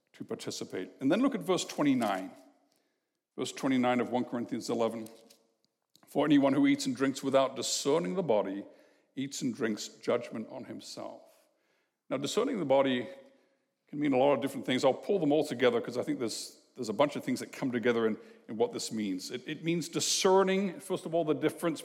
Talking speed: 195 wpm